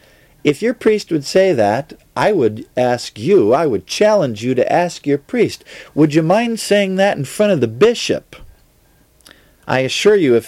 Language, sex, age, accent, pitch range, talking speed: English, male, 50-69, American, 115-160 Hz, 185 wpm